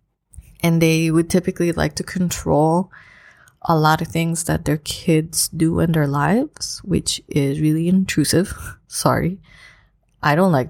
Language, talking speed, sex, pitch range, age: English, 145 wpm, female, 150-180 Hz, 20-39